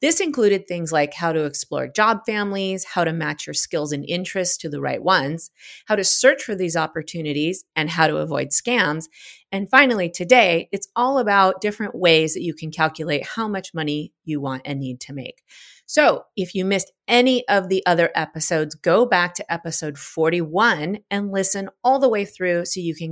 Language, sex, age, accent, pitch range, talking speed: English, female, 30-49, American, 155-205 Hz, 195 wpm